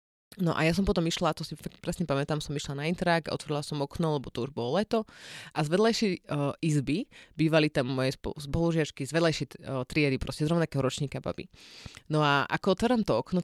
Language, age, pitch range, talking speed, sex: Slovak, 30-49, 135-165 Hz, 205 wpm, female